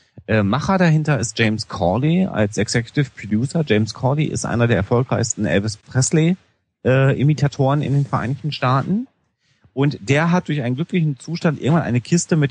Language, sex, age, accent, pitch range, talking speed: German, male, 40-59, German, 105-145 Hz, 160 wpm